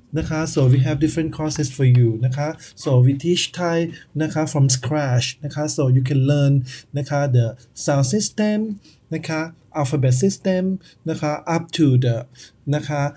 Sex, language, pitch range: male, Thai, 130-165 Hz